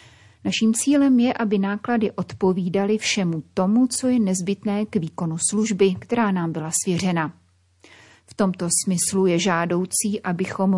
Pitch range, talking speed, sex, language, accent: 175-210 Hz, 135 wpm, female, Czech, native